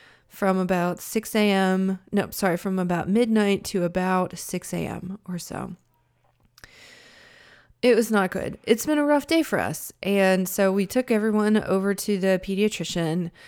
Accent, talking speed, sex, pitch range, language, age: American, 155 wpm, female, 180-220 Hz, English, 20-39